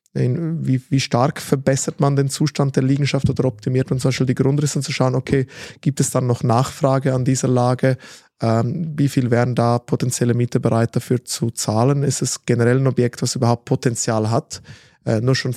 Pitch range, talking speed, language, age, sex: 125-140 Hz, 200 wpm, German, 20-39, male